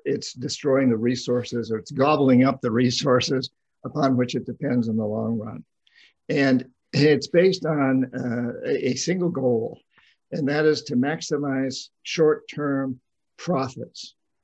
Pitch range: 125-150 Hz